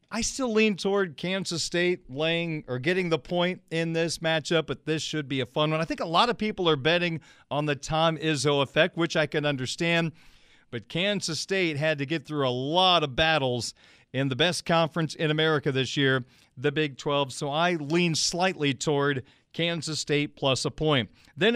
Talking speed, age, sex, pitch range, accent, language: 200 wpm, 40-59, male, 145-190 Hz, American, English